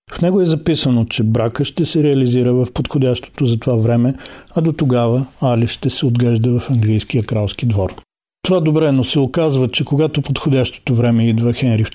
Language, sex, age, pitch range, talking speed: Bulgarian, male, 40-59, 115-135 Hz, 180 wpm